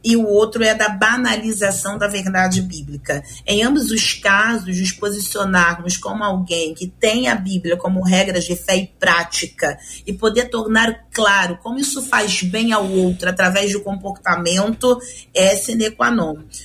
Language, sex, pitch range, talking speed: Portuguese, female, 200-255 Hz, 160 wpm